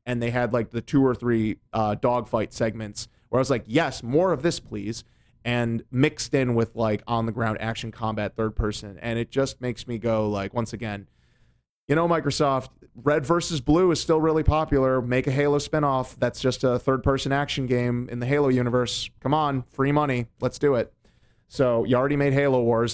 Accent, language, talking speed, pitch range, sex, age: American, English, 195 wpm, 115-140 Hz, male, 30-49